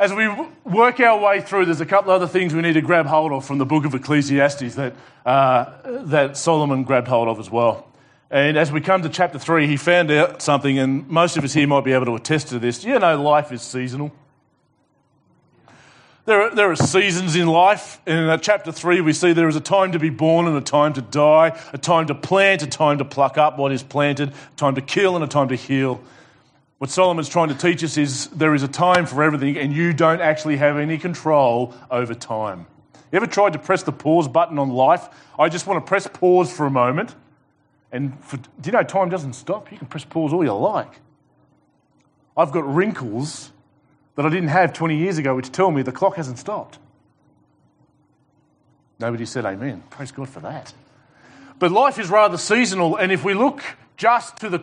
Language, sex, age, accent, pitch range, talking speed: English, male, 30-49, Australian, 140-175 Hz, 215 wpm